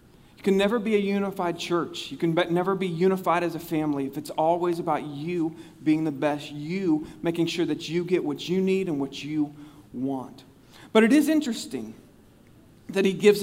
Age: 40-59